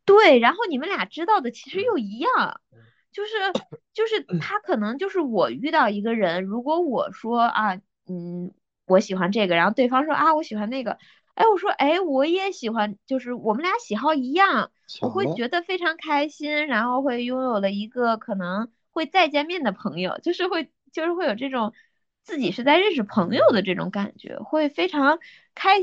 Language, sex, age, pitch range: Chinese, female, 20-39, 205-305 Hz